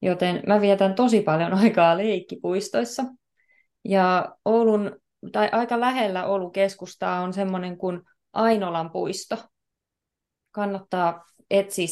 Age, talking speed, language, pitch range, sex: 30-49, 105 wpm, Finnish, 175-210 Hz, female